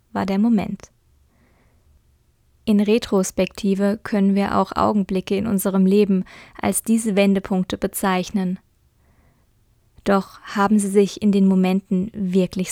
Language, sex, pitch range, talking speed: German, female, 180-200 Hz, 115 wpm